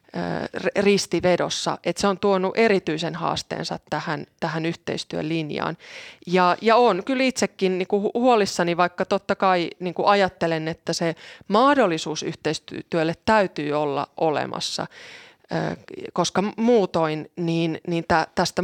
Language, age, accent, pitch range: Finnish, 20-39, native, 165-195 Hz